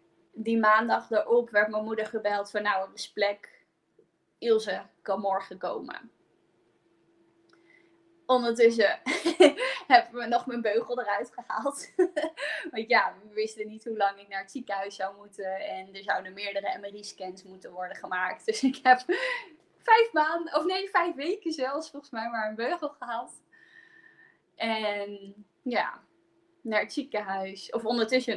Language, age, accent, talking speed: Dutch, 20-39, Dutch, 145 wpm